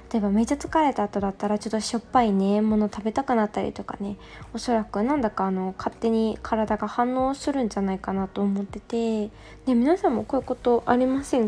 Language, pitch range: Japanese, 210-275 Hz